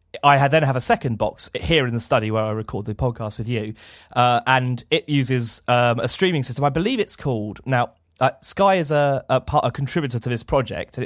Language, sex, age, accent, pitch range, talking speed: English, male, 30-49, British, 115-135 Hz, 230 wpm